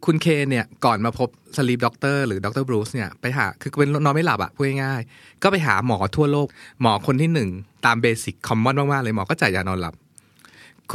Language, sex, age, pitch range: Thai, male, 20-39, 105-135 Hz